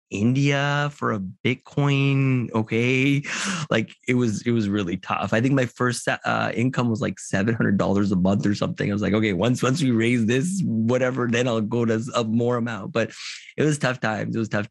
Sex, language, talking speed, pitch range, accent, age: male, English, 210 wpm, 110-145 Hz, American, 20-39